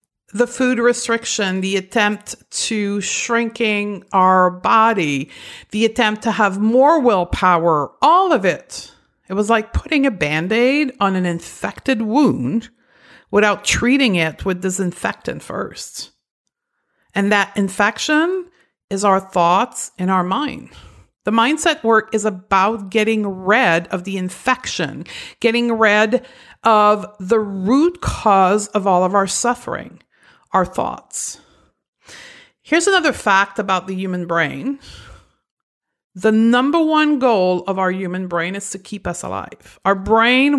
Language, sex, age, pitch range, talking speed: English, female, 50-69, 195-245 Hz, 130 wpm